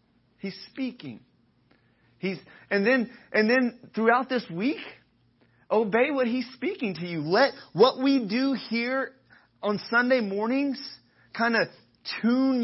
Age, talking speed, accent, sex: 30-49, 130 wpm, American, male